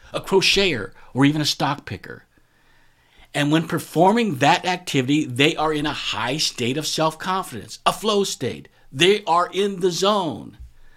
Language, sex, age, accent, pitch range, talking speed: English, male, 50-69, American, 145-200 Hz, 155 wpm